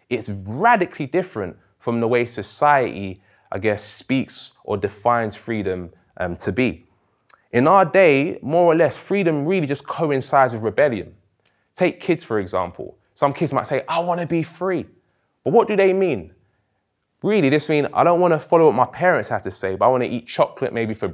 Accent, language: British, English